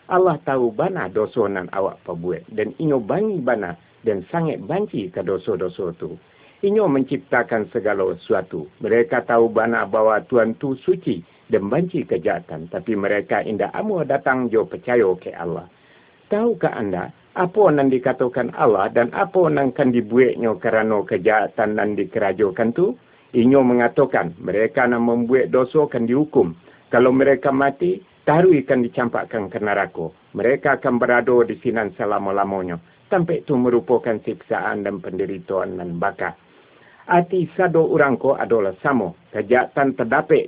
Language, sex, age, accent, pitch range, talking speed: Indonesian, male, 50-69, native, 120-170 Hz, 135 wpm